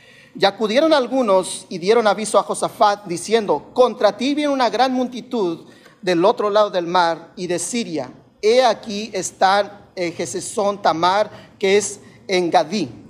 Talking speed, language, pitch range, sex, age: 150 wpm, Spanish, 180-235 Hz, male, 40-59